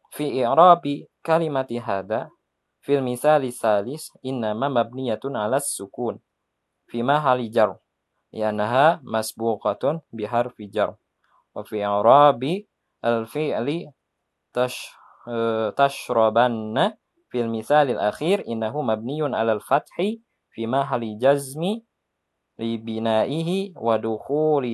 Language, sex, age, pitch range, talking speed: Indonesian, male, 20-39, 110-140 Hz, 80 wpm